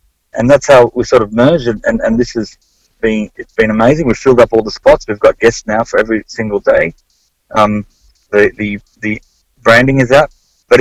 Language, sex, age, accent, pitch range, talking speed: English, male, 30-49, Australian, 105-125 Hz, 200 wpm